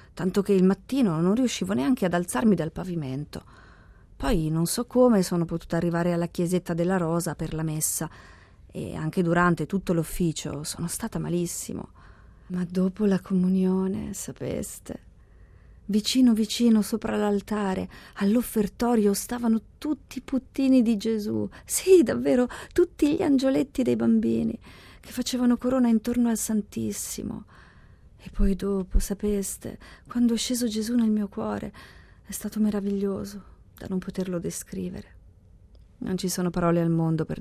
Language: Italian